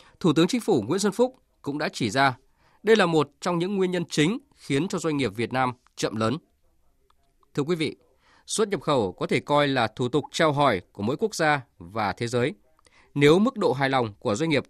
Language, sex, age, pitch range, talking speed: Vietnamese, male, 20-39, 125-175 Hz, 230 wpm